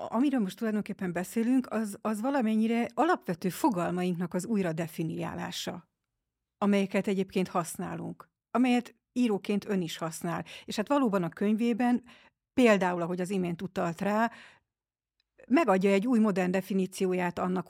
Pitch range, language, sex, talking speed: 175-220 Hz, Hungarian, female, 125 wpm